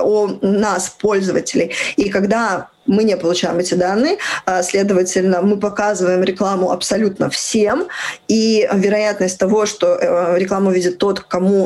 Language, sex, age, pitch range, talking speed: Russian, female, 20-39, 185-225 Hz, 125 wpm